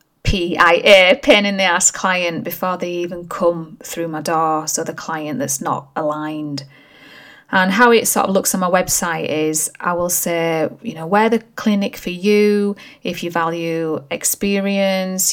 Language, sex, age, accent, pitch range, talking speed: English, female, 30-49, British, 165-195 Hz, 170 wpm